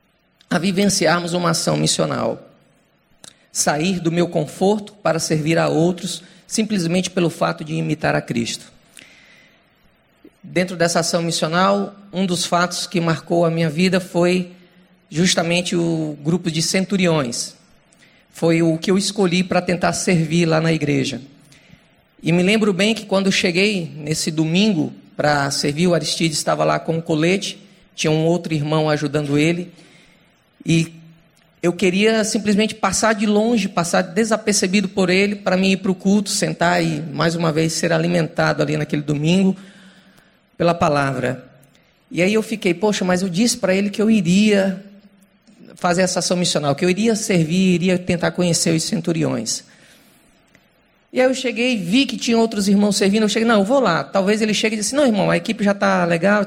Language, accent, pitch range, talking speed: Portuguese, Brazilian, 165-200 Hz, 165 wpm